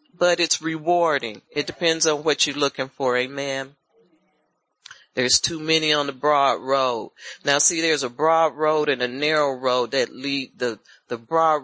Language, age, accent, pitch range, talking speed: English, 40-59, American, 140-170 Hz, 170 wpm